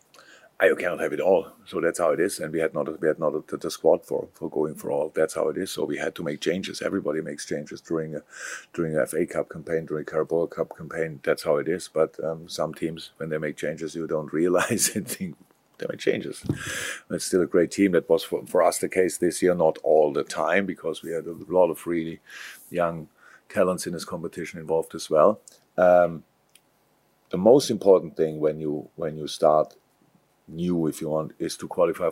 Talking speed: 220 wpm